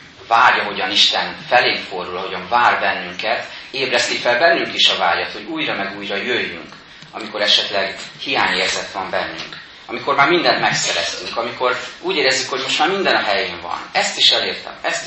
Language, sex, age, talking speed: Hungarian, male, 30-49, 165 wpm